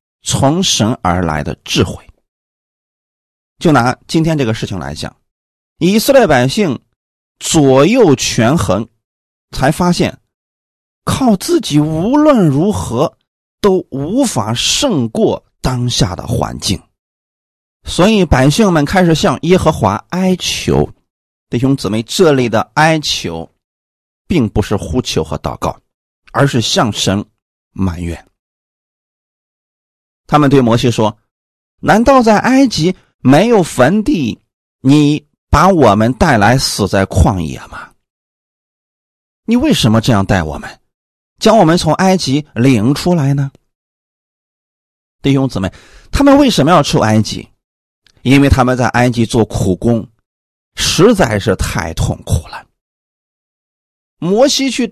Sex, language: male, Chinese